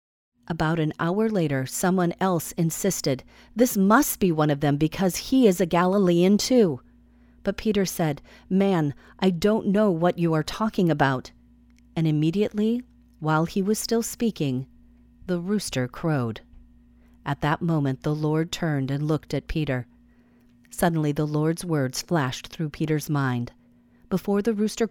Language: English